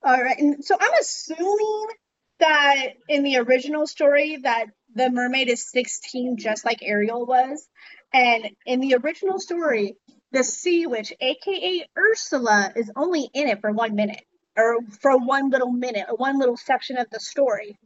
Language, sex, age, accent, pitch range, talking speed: English, female, 30-49, American, 250-325 Hz, 160 wpm